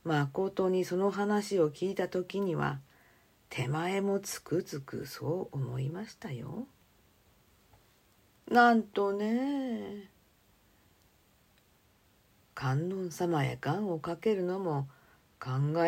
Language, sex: Japanese, female